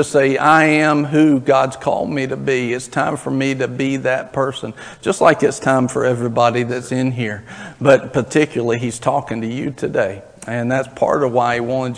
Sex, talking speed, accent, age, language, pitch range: male, 205 wpm, American, 50-69, English, 130-160 Hz